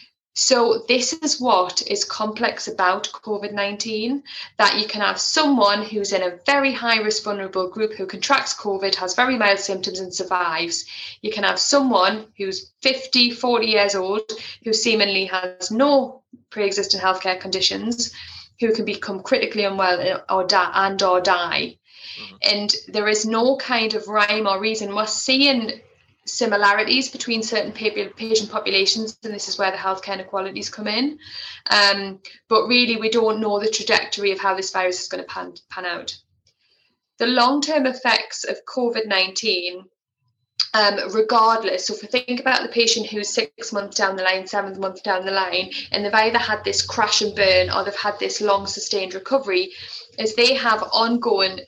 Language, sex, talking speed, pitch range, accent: English, female, 165 wpm, 195-235 Hz, British